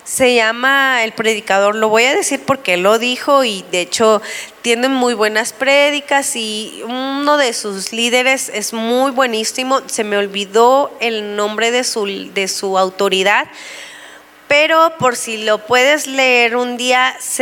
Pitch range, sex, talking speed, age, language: 220-295 Hz, female, 150 wpm, 20-39, Spanish